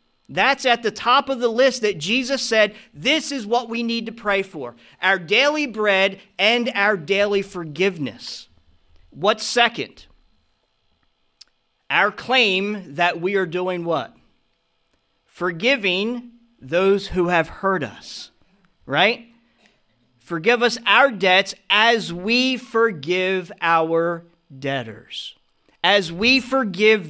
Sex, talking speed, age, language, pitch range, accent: male, 115 wpm, 40-59, English, 175-240 Hz, American